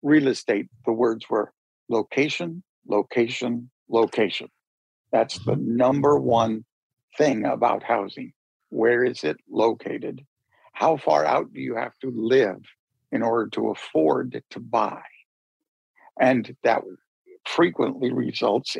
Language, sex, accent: English, male, American